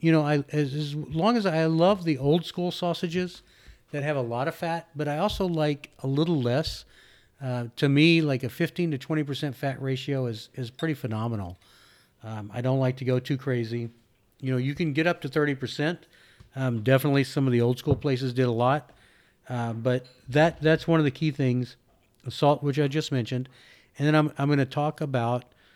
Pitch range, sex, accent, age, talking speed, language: 125-150 Hz, male, American, 50-69, 215 wpm, English